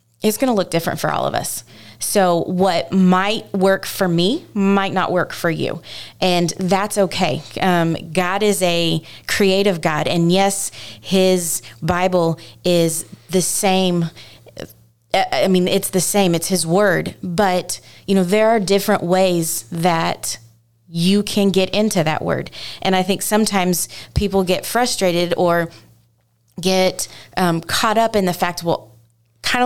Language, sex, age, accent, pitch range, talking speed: English, female, 20-39, American, 165-195 Hz, 150 wpm